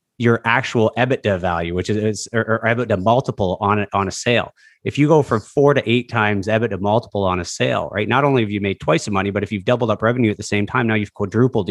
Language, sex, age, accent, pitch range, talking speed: English, male, 30-49, American, 100-125 Hz, 245 wpm